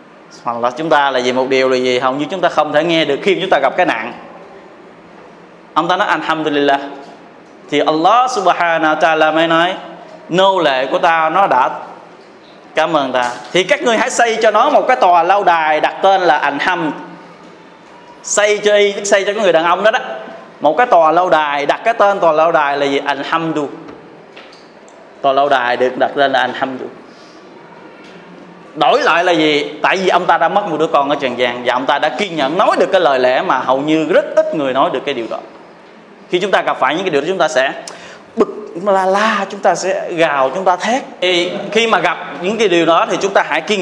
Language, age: Vietnamese, 20-39